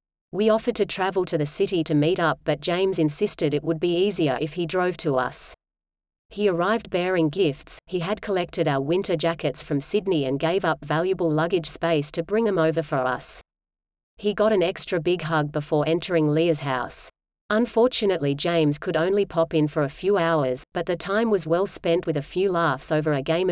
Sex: female